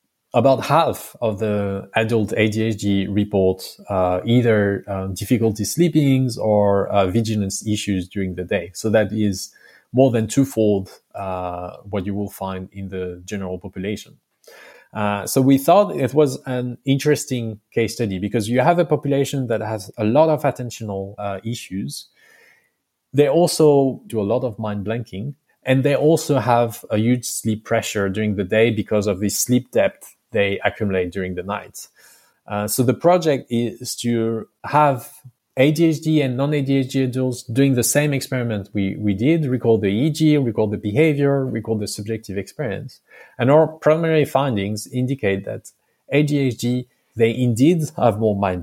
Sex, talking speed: male, 155 wpm